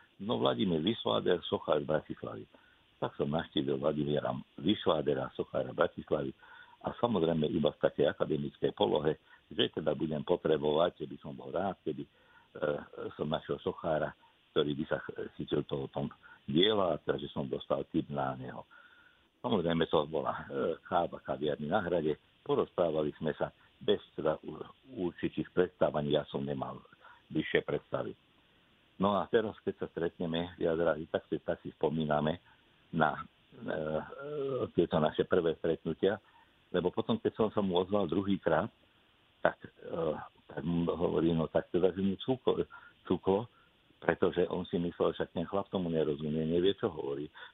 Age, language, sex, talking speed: 60-79, Slovak, male, 145 wpm